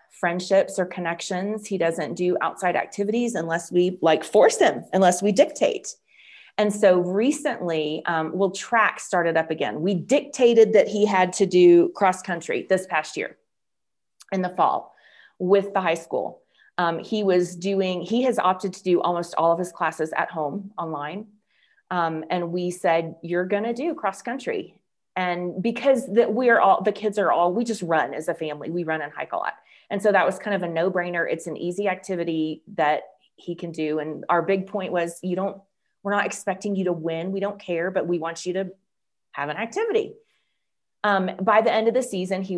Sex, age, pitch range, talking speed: female, 30-49, 170-205 Hz, 200 wpm